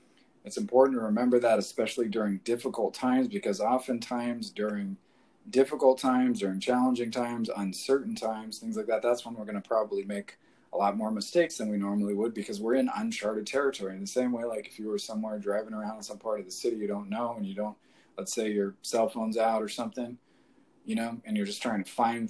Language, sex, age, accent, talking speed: English, male, 20-39, American, 215 wpm